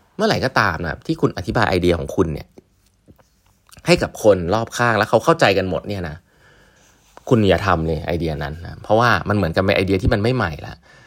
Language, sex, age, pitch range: Thai, male, 20-39, 85-110 Hz